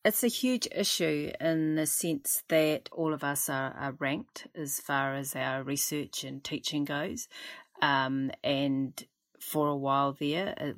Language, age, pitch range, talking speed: English, 30-49, 135-155 Hz, 160 wpm